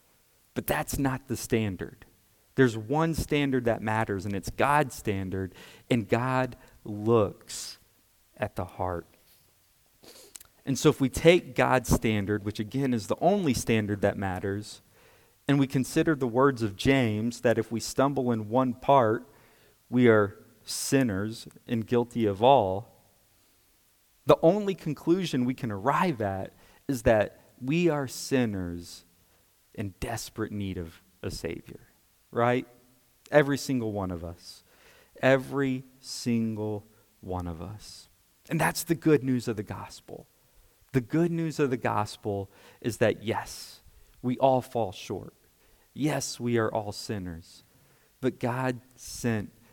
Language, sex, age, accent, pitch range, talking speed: English, male, 40-59, American, 100-130 Hz, 140 wpm